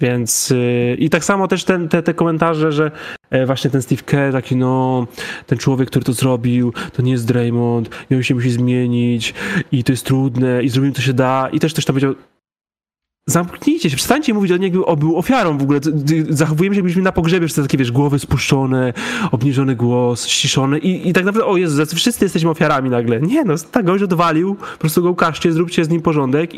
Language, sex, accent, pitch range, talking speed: Polish, male, native, 135-180 Hz, 210 wpm